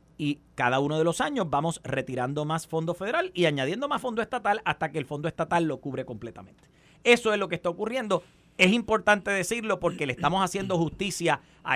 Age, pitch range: 30-49, 140-195 Hz